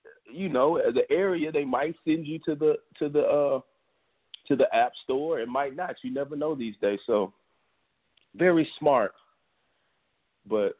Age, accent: 30-49, American